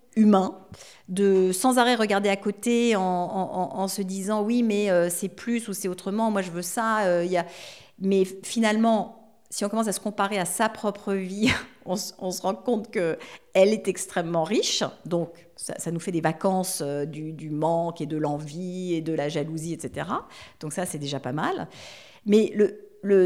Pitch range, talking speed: 165-210 Hz, 200 wpm